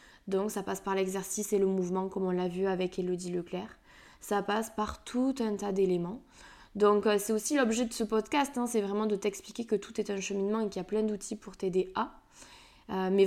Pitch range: 195-225 Hz